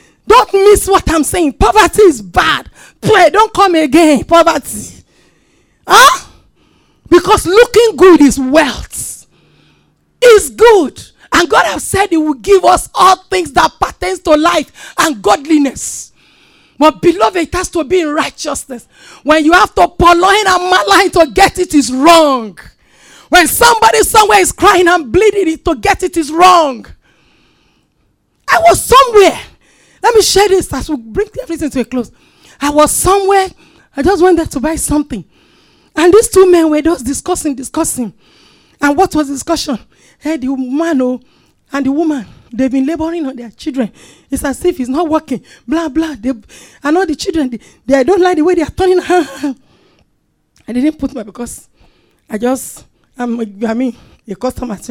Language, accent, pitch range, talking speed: English, Nigerian, 275-370 Hz, 165 wpm